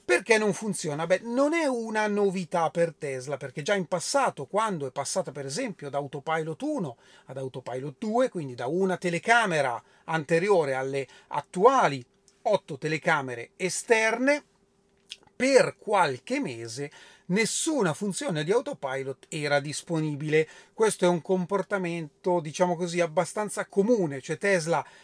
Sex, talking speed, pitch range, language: male, 125 wpm, 150-200 Hz, Italian